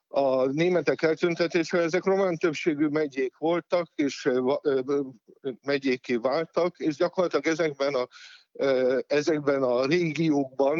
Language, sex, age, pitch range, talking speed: Hungarian, male, 50-69, 140-160 Hz, 105 wpm